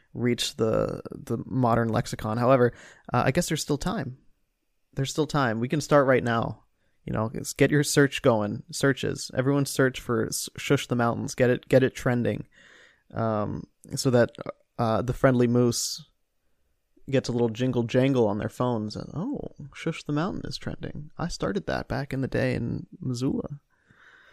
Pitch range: 120-145 Hz